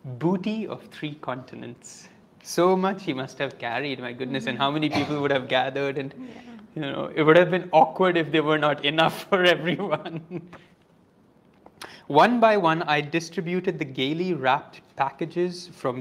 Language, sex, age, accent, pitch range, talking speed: English, male, 20-39, Indian, 130-170 Hz, 165 wpm